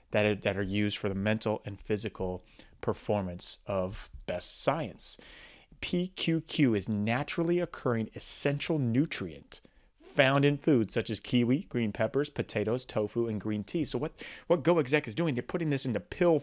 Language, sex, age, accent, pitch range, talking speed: English, male, 30-49, American, 115-170 Hz, 155 wpm